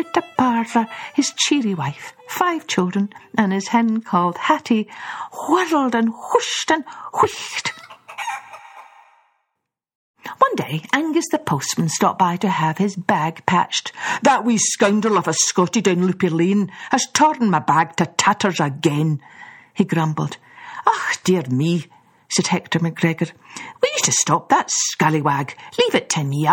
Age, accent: 60-79, British